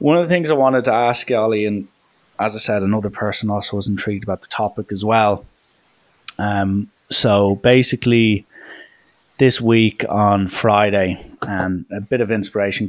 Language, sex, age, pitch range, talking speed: English, male, 20-39, 95-105 Hz, 170 wpm